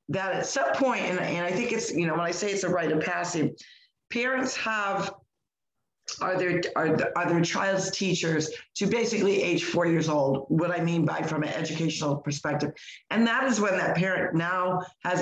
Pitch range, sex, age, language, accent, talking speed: 160-190 Hz, female, 50-69, English, American, 190 wpm